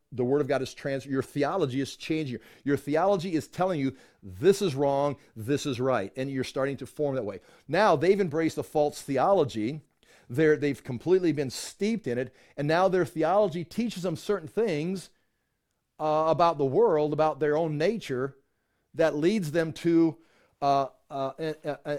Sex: male